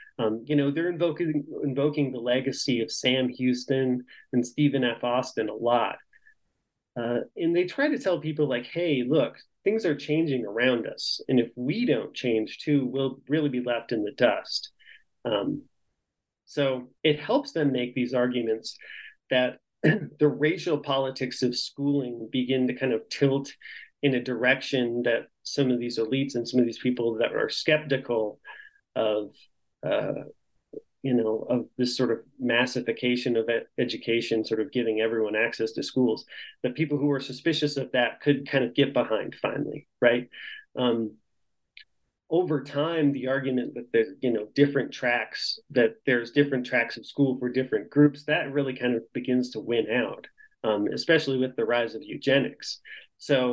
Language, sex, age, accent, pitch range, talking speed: English, male, 30-49, American, 120-150 Hz, 165 wpm